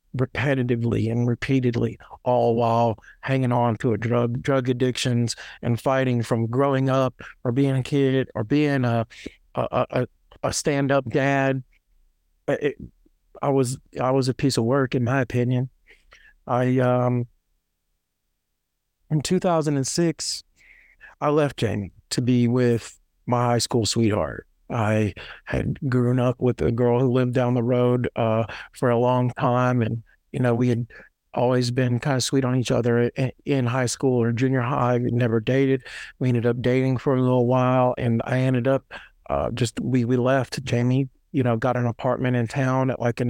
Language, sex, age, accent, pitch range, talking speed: English, male, 50-69, American, 120-135 Hz, 175 wpm